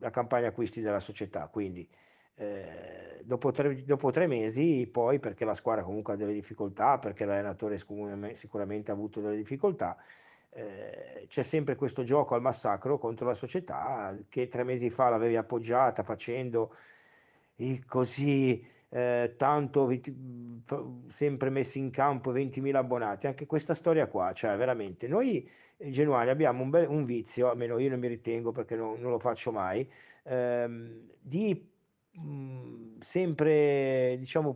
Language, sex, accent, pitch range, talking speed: Italian, male, native, 120-165 Hz, 135 wpm